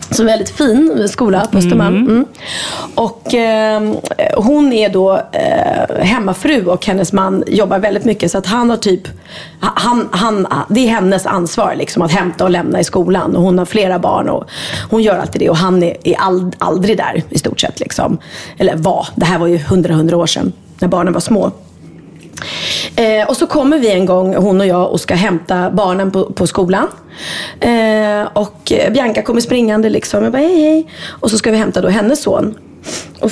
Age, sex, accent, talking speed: 30-49, female, native, 195 wpm